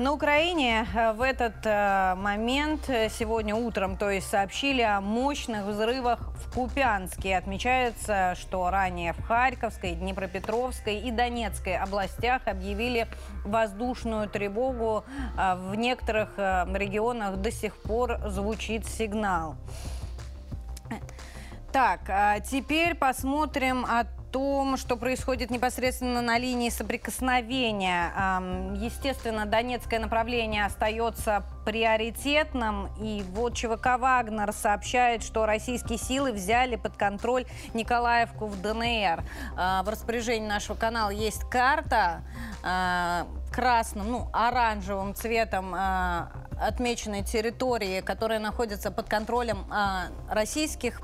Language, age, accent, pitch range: Russian, 20-39, native, 200-245 Hz